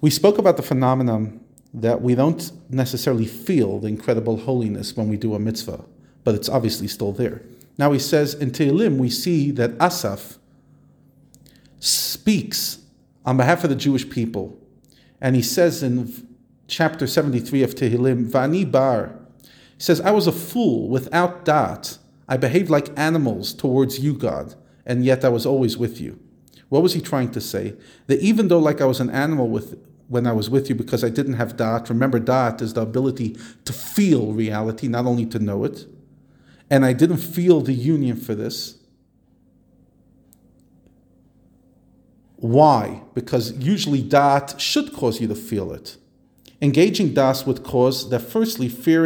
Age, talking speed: 40-59, 165 wpm